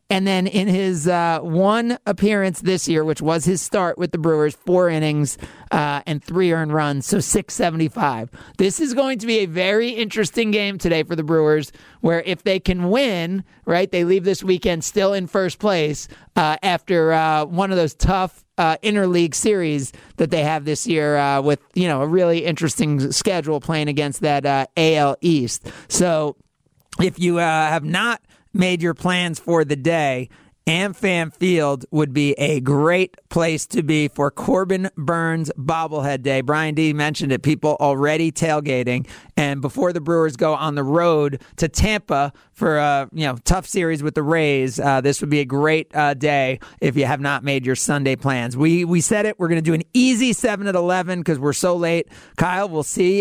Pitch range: 150-185 Hz